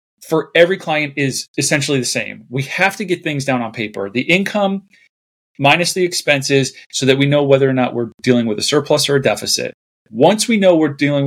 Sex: male